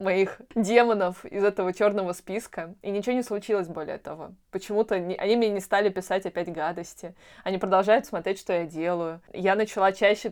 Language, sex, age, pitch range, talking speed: Russian, female, 20-39, 175-200 Hz, 170 wpm